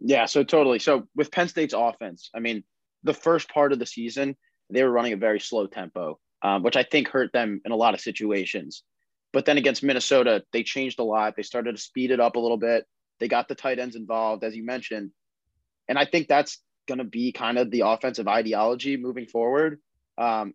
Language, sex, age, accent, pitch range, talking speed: English, male, 20-39, American, 105-130 Hz, 220 wpm